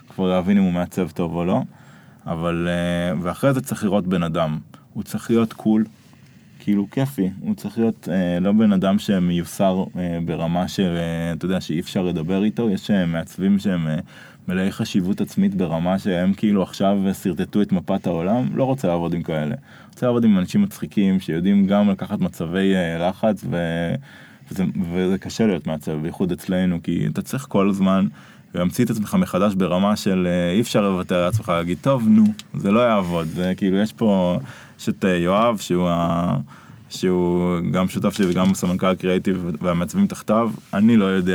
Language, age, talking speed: Hebrew, 20-39, 170 wpm